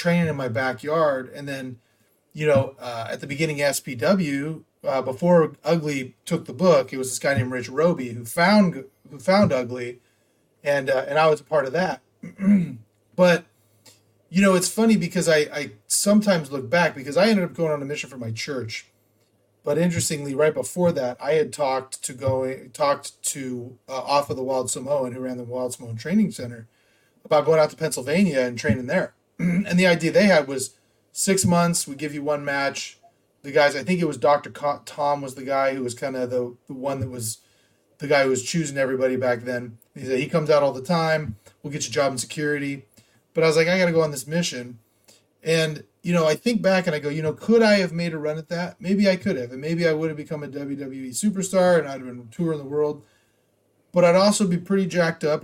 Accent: American